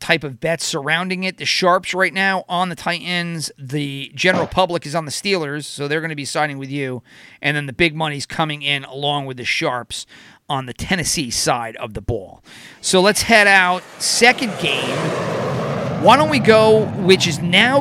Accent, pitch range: American, 140-185 Hz